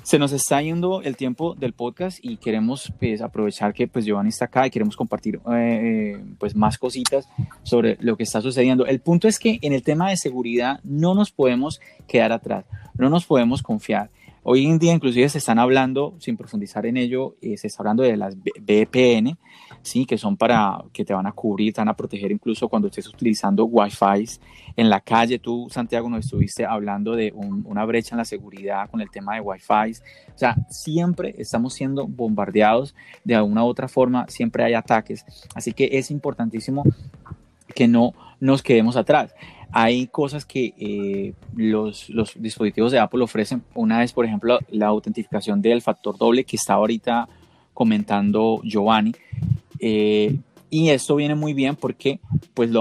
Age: 30-49